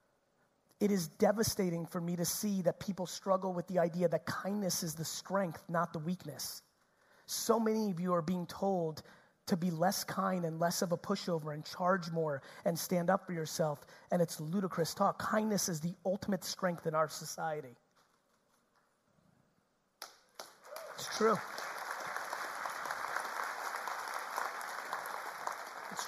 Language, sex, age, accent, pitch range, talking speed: English, male, 30-49, American, 175-205 Hz, 140 wpm